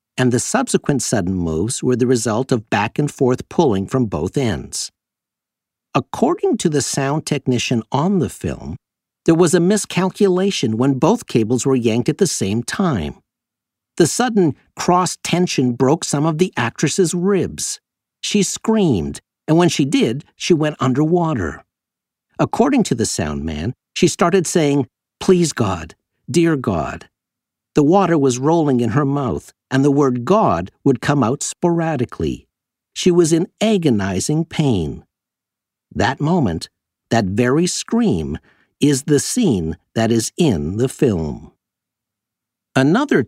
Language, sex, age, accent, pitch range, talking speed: English, male, 50-69, American, 120-180 Hz, 135 wpm